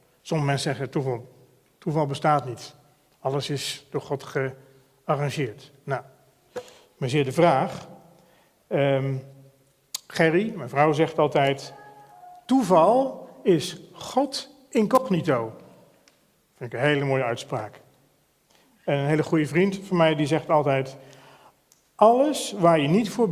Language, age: Dutch, 50-69